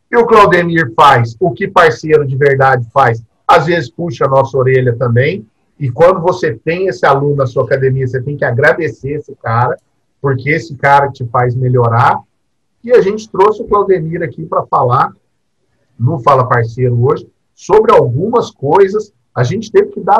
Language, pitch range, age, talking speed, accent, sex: Portuguese, 120-165 Hz, 50-69, 175 wpm, Brazilian, male